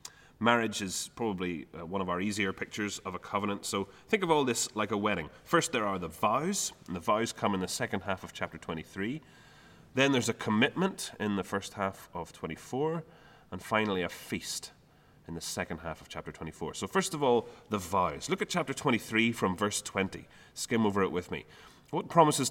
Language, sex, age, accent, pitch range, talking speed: English, male, 30-49, British, 100-140 Hz, 205 wpm